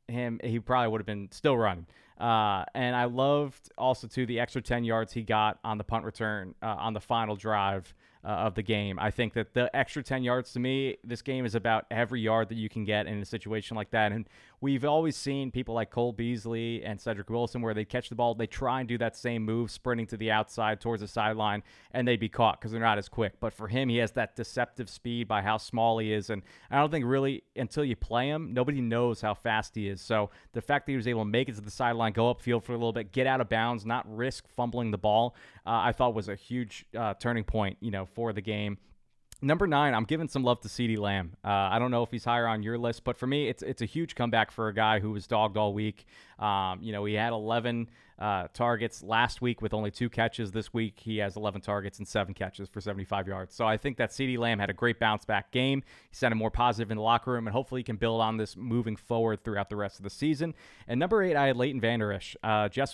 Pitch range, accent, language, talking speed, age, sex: 110-125 Hz, American, English, 260 wpm, 30-49, male